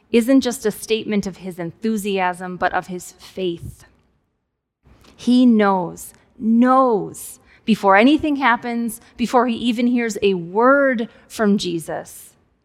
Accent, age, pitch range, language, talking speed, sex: American, 20-39, 190-240 Hz, English, 120 wpm, female